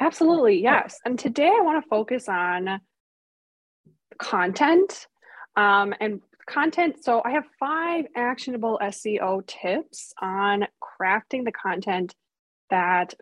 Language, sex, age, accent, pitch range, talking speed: English, female, 20-39, American, 195-250 Hz, 115 wpm